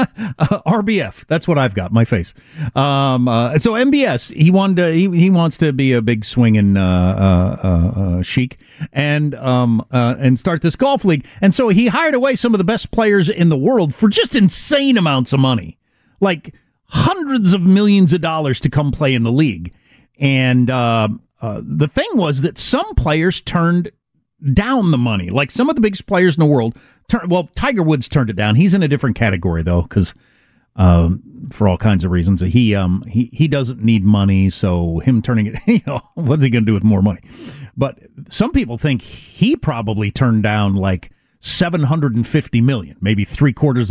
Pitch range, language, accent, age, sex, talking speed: 120-200 Hz, English, American, 50-69, male, 190 wpm